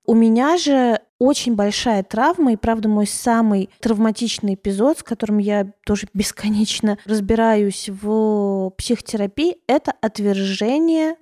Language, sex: Russian, female